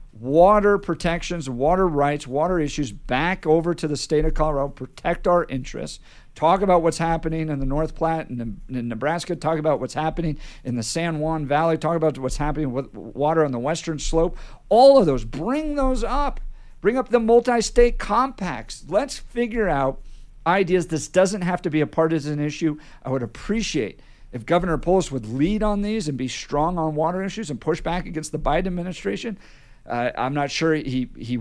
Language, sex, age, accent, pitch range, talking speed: English, male, 50-69, American, 135-175 Hz, 185 wpm